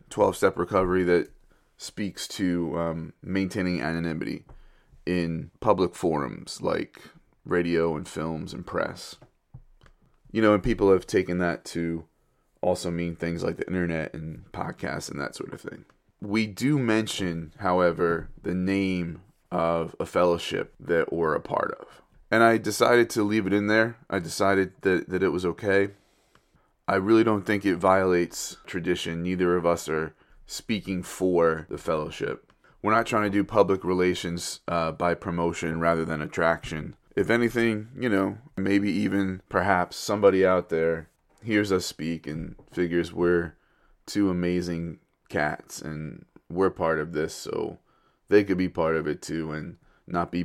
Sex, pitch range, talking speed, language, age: male, 85-100 Hz, 155 wpm, English, 20-39